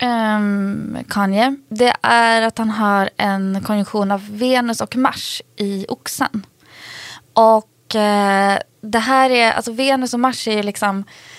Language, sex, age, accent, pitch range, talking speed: Swedish, female, 20-39, native, 180-220 Hz, 125 wpm